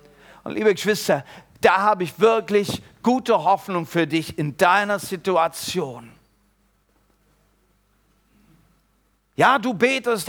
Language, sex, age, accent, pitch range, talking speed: German, male, 50-69, German, 205-285 Hz, 100 wpm